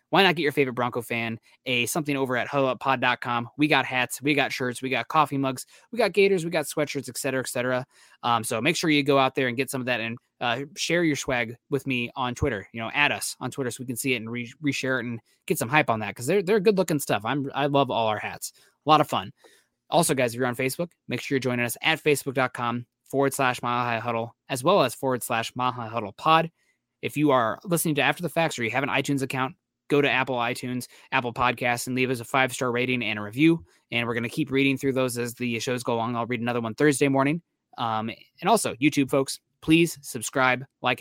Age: 20-39